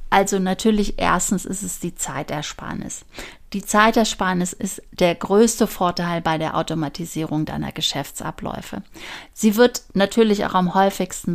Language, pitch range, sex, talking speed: German, 180-220 Hz, female, 125 wpm